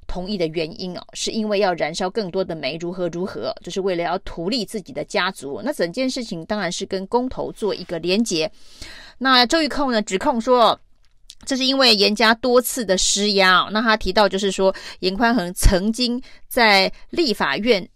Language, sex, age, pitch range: Chinese, female, 30-49, 185-235 Hz